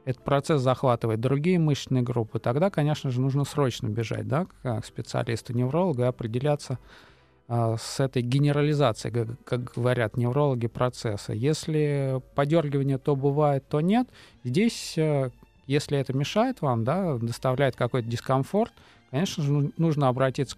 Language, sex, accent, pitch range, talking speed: Russian, male, native, 120-150 Hz, 120 wpm